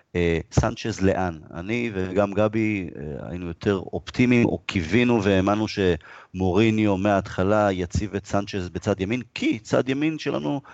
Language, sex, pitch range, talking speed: Hebrew, male, 95-120 Hz, 135 wpm